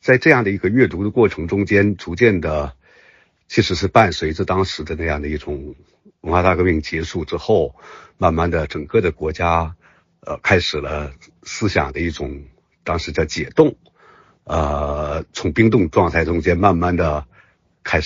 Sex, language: male, Chinese